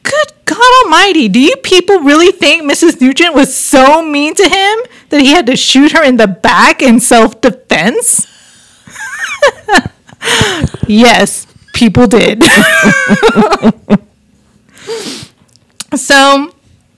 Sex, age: female, 30-49